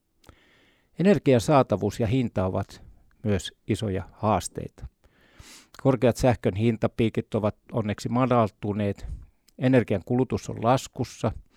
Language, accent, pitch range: Finnish, native, 100-120 Hz